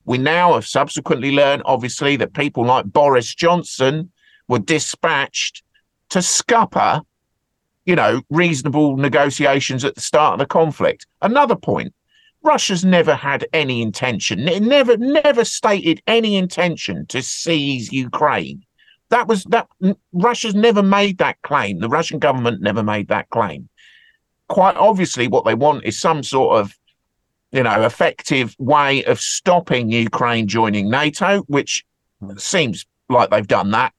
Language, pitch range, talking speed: English, 120-180 Hz, 140 wpm